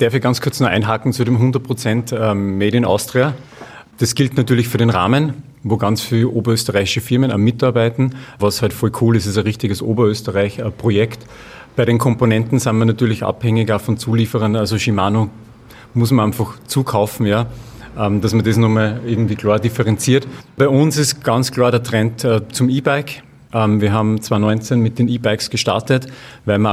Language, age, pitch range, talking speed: German, 40-59, 110-125 Hz, 170 wpm